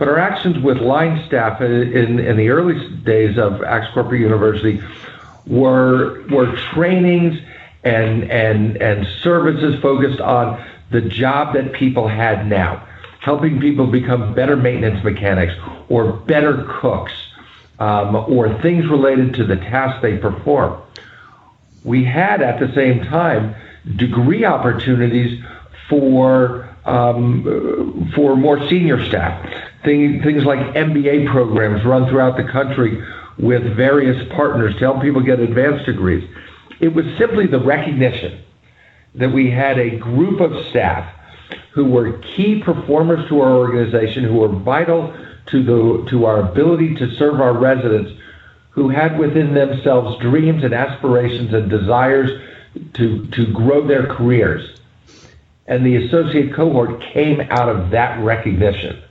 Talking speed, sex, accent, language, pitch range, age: 135 wpm, male, American, English, 115-145 Hz, 50-69